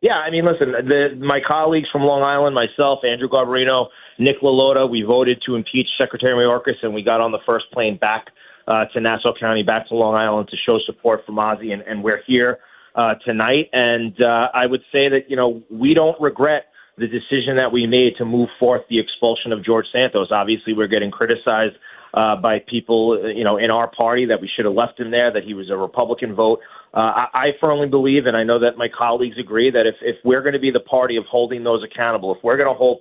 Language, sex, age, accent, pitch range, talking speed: English, male, 30-49, American, 110-130 Hz, 230 wpm